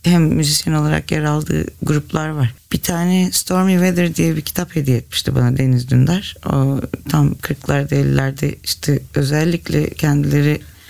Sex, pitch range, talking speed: female, 135-170 Hz, 145 wpm